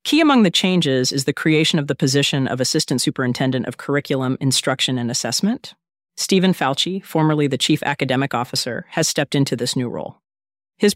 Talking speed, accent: 175 wpm, American